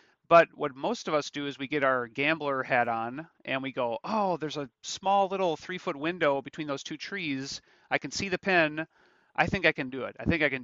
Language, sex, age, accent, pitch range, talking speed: English, male, 30-49, American, 135-160 Hz, 245 wpm